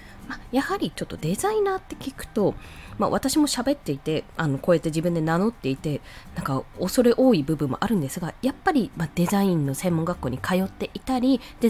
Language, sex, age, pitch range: Japanese, female, 20-39, 170-280 Hz